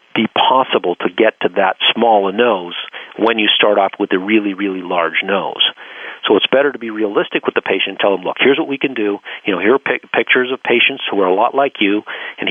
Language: English